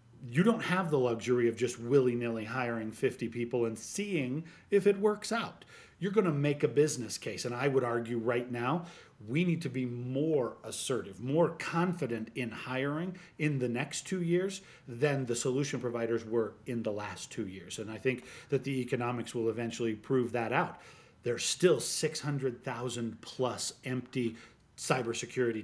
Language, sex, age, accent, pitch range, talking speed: English, male, 40-59, American, 115-140 Hz, 170 wpm